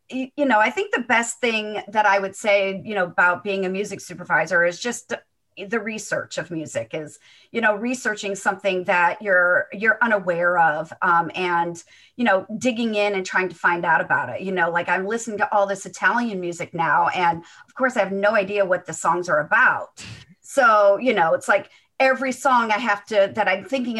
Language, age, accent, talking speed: English, 40-59, American, 210 wpm